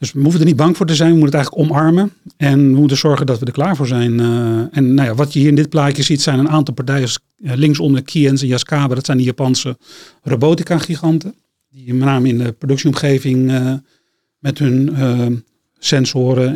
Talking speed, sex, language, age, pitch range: 215 wpm, male, Dutch, 40-59, 130-150 Hz